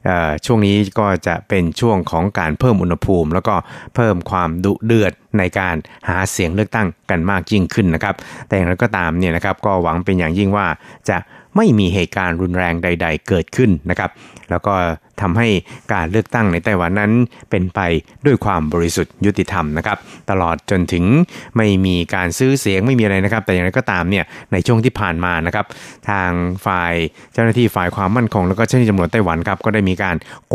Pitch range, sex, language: 90-110 Hz, male, Thai